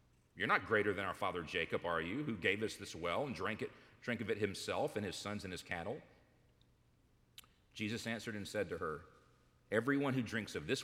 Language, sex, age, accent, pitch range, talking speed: English, male, 40-59, American, 110-160 Hz, 210 wpm